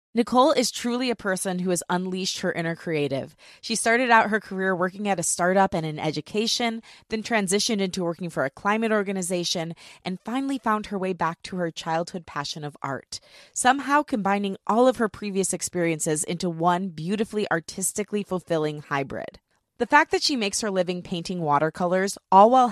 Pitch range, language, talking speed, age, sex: 165-210 Hz, English, 175 wpm, 20-39, female